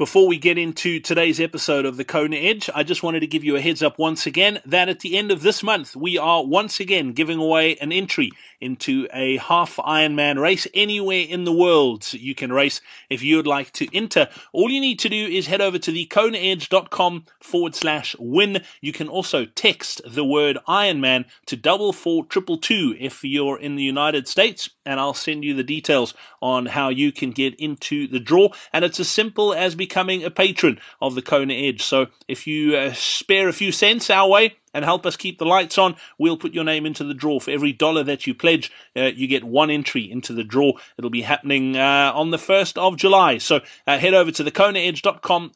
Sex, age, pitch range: male, 30-49, 145-190 Hz